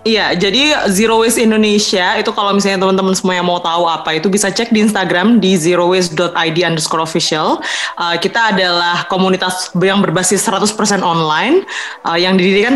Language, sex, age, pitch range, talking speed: Indonesian, female, 20-39, 165-195 Hz, 160 wpm